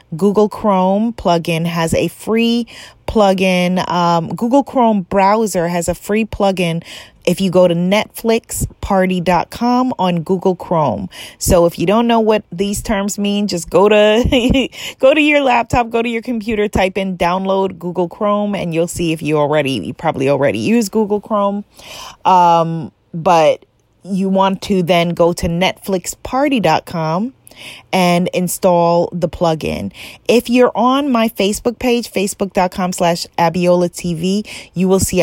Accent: American